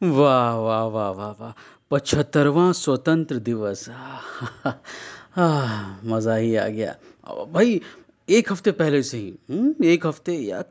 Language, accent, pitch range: Hindi, native, 120-185 Hz